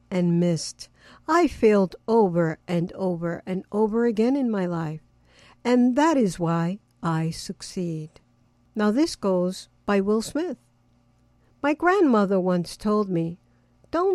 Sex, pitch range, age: female, 170-230 Hz, 60-79